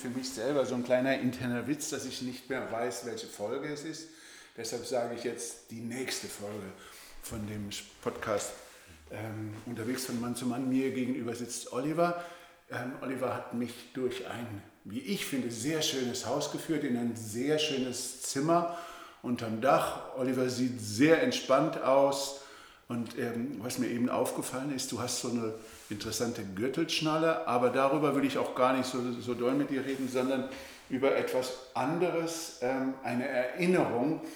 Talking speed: 165 wpm